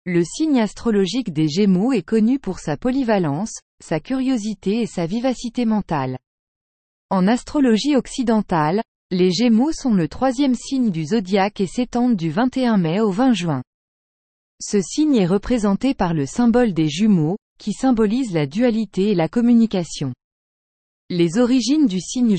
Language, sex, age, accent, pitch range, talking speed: English, female, 20-39, French, 175-245 Hz, 145 wpm